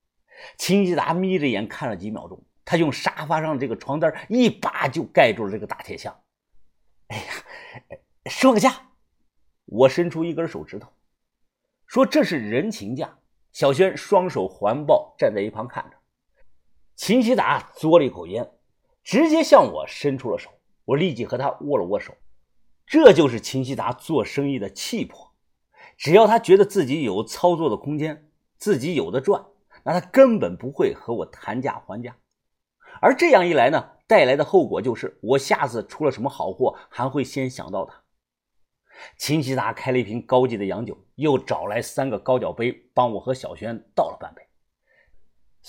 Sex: male